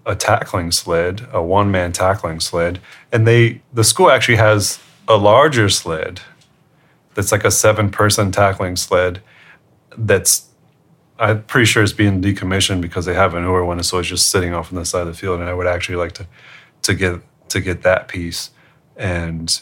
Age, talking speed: 30-49, 175 wpm